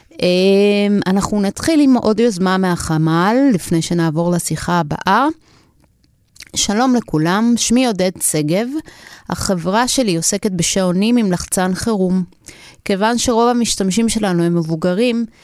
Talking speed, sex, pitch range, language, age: 110 wpm, female, 175-215 Hz, Hebrew, 30-49